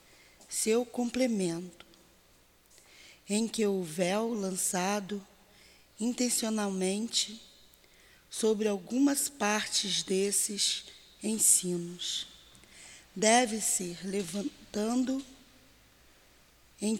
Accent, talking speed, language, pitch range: Brazilian, 60 wpm, Portuguese, 185-225 Hz